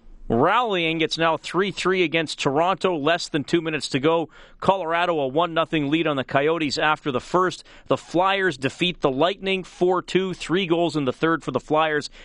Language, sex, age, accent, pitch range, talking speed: English, male, 40-59, American, 135-170 Hz, 175 wpm